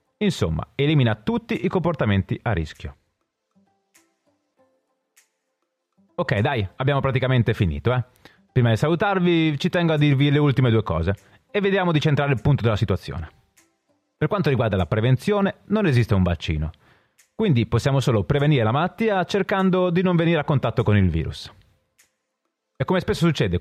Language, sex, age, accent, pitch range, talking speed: Italian, male, 30-49, native, 105-170 Hz, 155 wpm